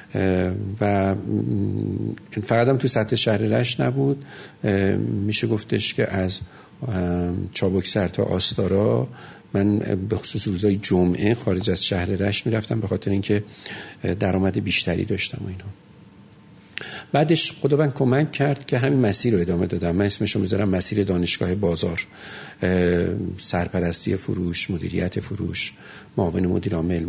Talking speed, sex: 125 wpm, male